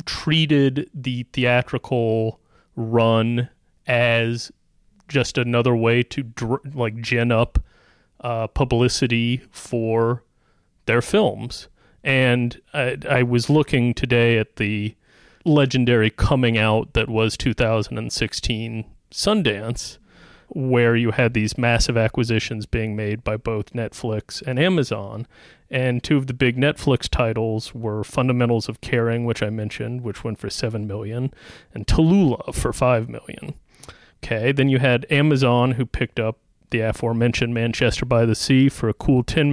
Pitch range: 110-130 Hz